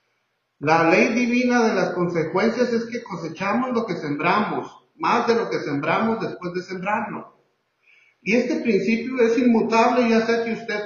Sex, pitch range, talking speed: male, 195-245 Hz, 160 wpm